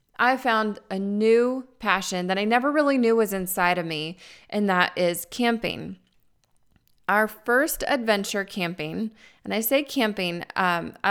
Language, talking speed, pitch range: English, 135 wpm, 180-230 Hz